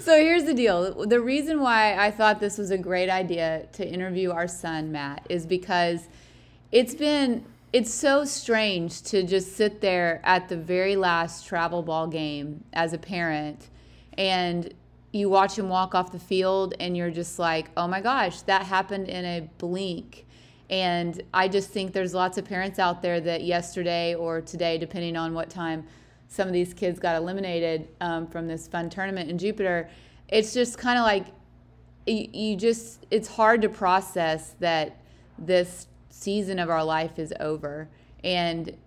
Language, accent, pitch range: English, American, 165-195 Hz